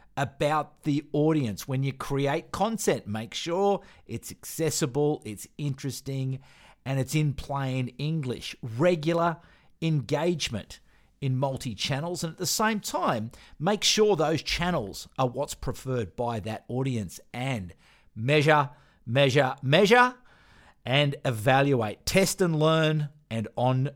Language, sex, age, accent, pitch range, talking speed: English, male, 50-69, Australian, 130-200 Hz, 120 wpm